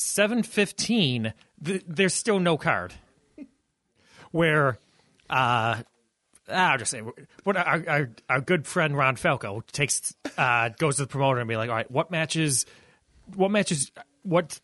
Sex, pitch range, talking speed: male, 110-150 Hz, 150 wpm